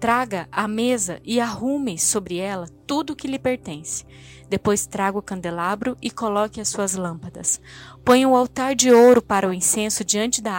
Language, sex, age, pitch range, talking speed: Portuguese, female, 20-39, 195-245 Hz, 175 wpm